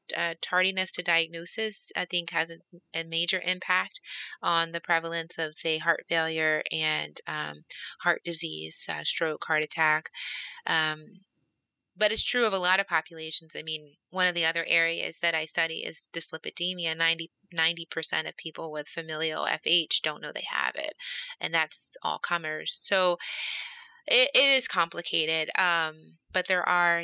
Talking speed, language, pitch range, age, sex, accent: 160 wpm, English, 155-175 Hz, 30-49, female, American